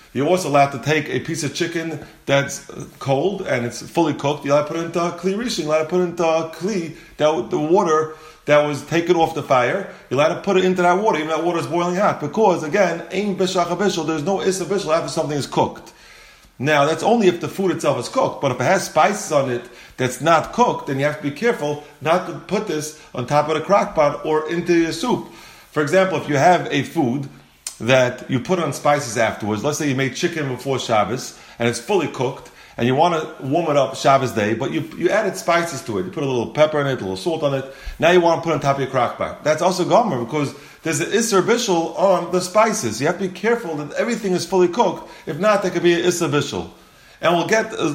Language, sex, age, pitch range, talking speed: English, male, 30-49, 145-180 Hz, 245 wpm